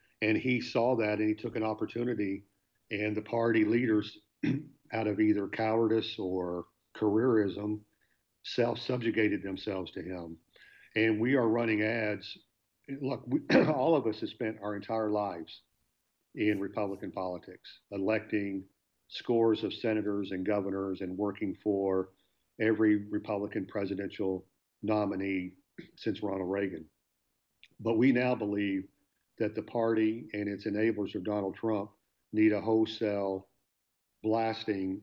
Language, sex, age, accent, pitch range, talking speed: English, male, 50-69, American, 100-115 Hz, 125 wpm